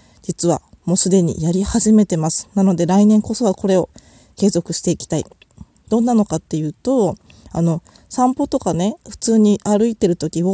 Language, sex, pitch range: Japanese, female, 180-245 Hz